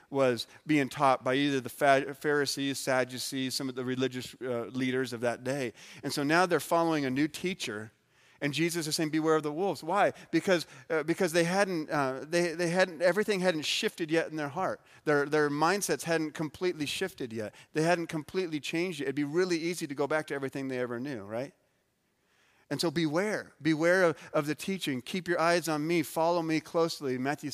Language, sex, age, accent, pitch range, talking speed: English, male, 40-59, American, 135-170 Hz, 205 wpm